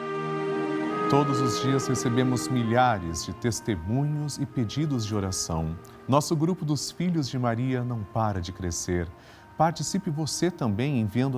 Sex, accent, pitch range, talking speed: male, Brazilian, 95-130 Hz, 130 wpm